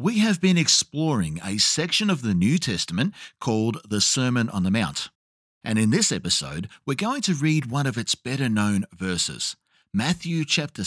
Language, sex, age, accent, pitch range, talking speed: English, male, 50-69, Australian, 115-180 Hz, 170 wpm